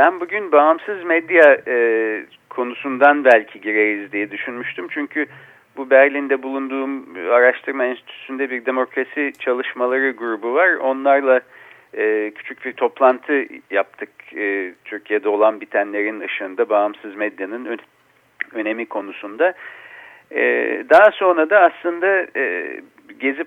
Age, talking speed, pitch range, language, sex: 50-69, 110 wpm, 120-185 Hz, Turkish, male